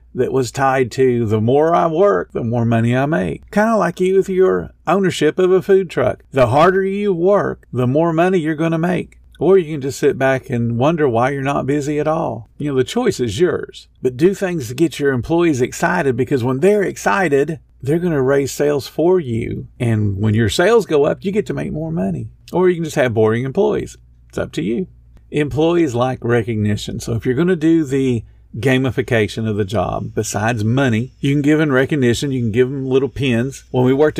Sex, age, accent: male, 50-69, American